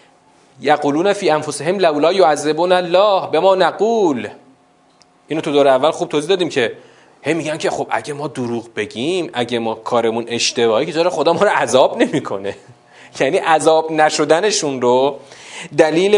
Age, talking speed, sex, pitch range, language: 30-49, 165 wpm, male, 125-170 Hz, Persian